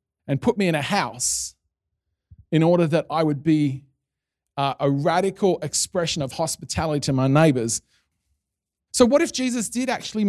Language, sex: English, male